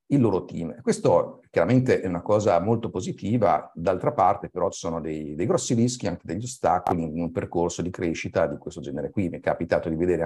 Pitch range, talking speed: 85-115 Hz, 210 wpm